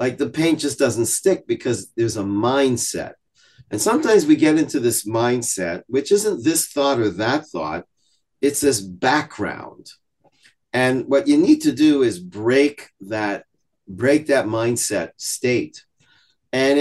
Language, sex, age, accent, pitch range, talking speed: English, male, 50-69, American, 115-155 Hz, 145 wpm